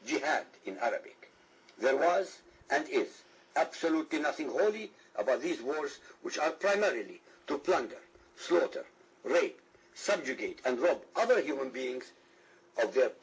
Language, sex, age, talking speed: English, male, 60-79, 125 wpm